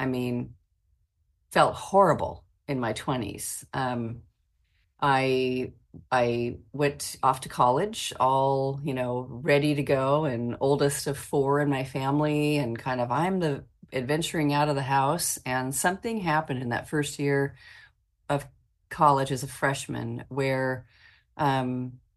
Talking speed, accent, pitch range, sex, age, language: 140 wpm, American, 125-150 Hz, female, 40-59, English